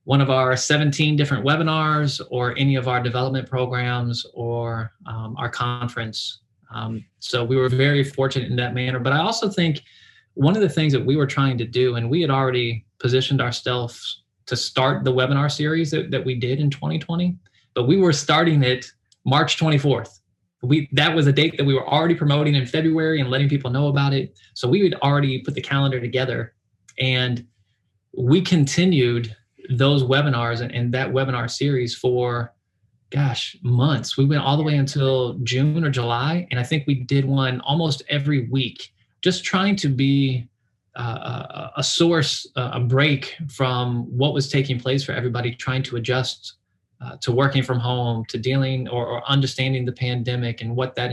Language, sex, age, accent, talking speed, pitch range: English, male, 20-39, American, 180 wpm, 120-140 Hz